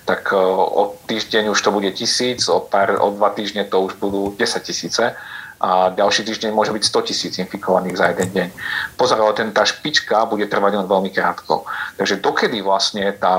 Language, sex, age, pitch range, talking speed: Slovak, male, 40-59, 95-105 Hz, 180 wpm